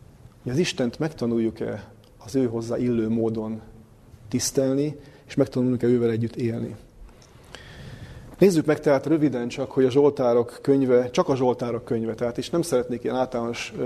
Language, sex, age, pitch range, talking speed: Hungarian, male, 30-49, 120-135 Hz, 145 wpm